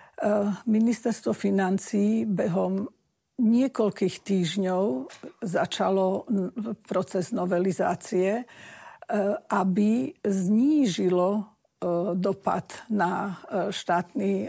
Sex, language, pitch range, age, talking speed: female, Slovak, 185-215 Hz, 50-69, 55 wpm